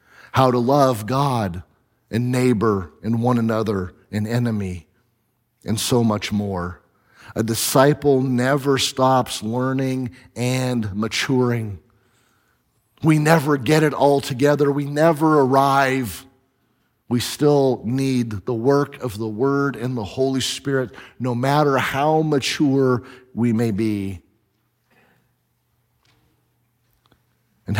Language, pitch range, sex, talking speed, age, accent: English, 120-150 Hz, male, 110 wpm, 40-59, American